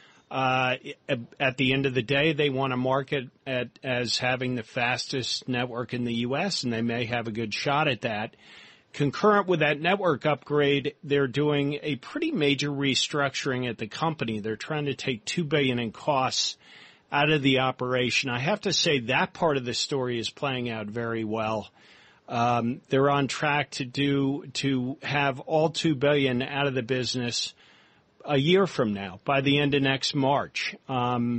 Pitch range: 125-150 Hz